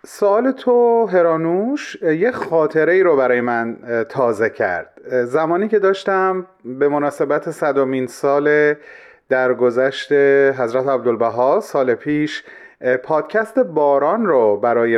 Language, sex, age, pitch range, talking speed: Persian, male, 40-59, 130-200 Hz, 110 wpm